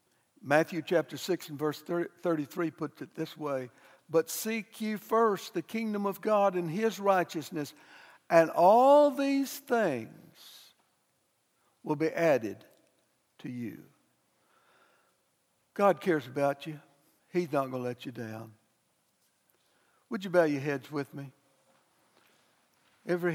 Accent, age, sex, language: American, 60-79, male, English